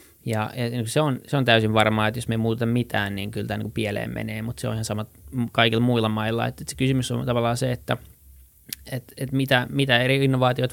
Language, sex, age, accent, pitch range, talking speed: Finnish, male, 20-39, native, 110-120 Hz, 220 wpm